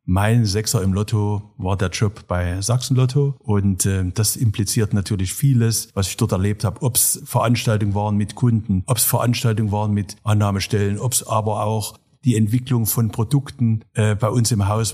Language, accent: German, German